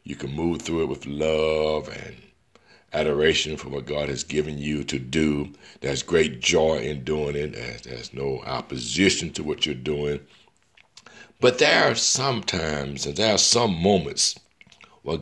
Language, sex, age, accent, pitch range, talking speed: English, male, 60-79, American, 70-80 Hz, 160 wpm